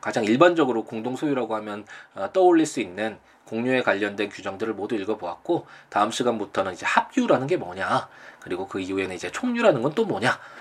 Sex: male